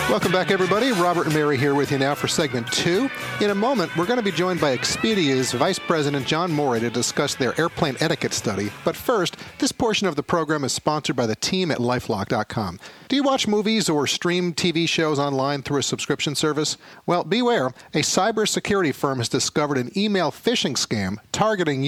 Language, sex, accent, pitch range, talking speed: English, male, American, 130-180 Hz, 195 wpm